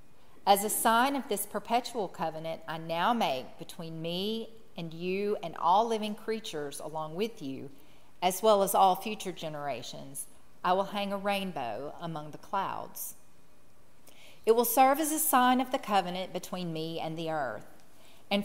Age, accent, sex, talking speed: 40-59, American, female, 165 wpm